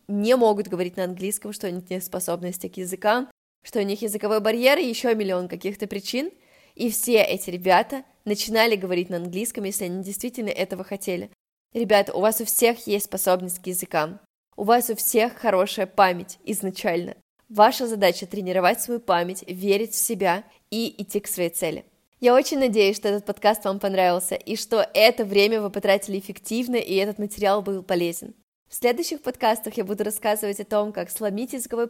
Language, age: Russian, 20-39